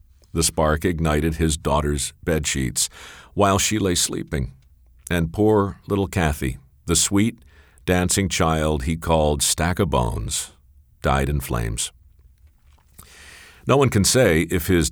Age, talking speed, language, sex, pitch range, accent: 50-69, 130 wpm, English, male, 70-90 Hz, American